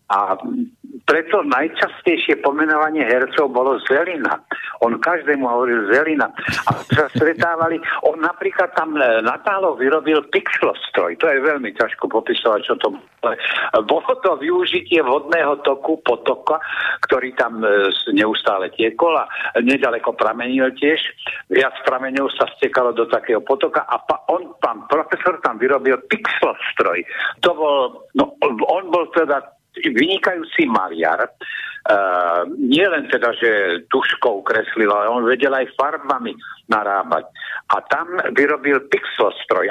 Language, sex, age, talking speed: Slovak, male, 50-69, 120 wpm